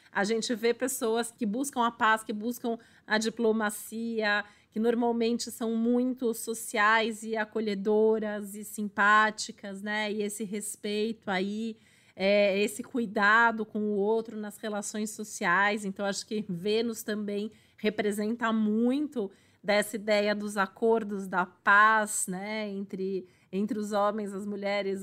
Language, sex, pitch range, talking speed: Portuguese, female, 205-235 Hz, 130 wpm